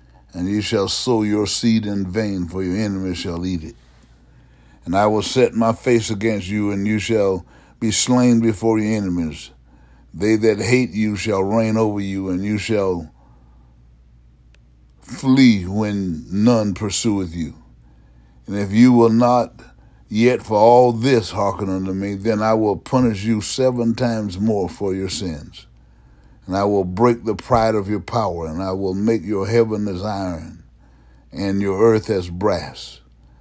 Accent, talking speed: American, 165 wpm